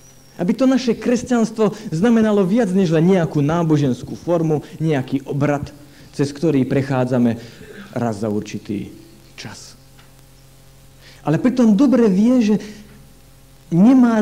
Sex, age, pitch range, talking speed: male, 50-69, 115-175 Hz, 110 wpm